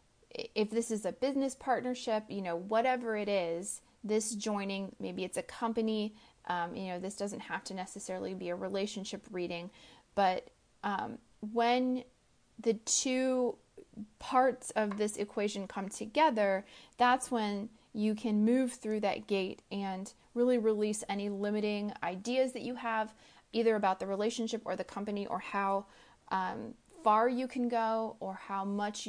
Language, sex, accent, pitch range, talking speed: English, female, American, 195-235 Hz, 155 wpm